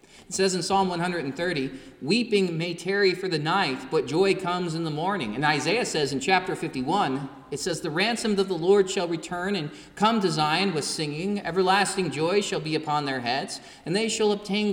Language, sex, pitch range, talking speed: English, male, 155-200 Hz, 200 wpm